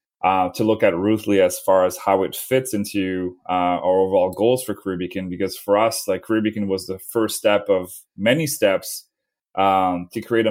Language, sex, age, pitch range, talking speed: English, male, 30-49, 95-110 Hz, 200 wpm